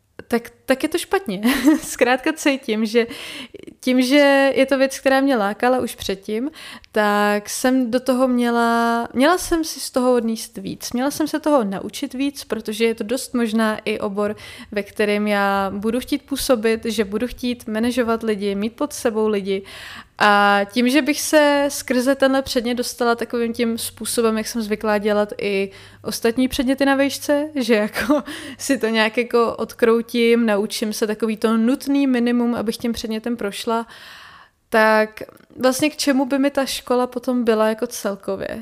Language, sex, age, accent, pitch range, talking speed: Czech, female, 20-39, native, 215-255 Hz, 165 wpm